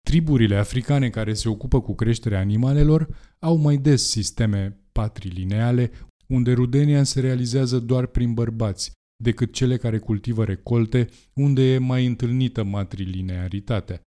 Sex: male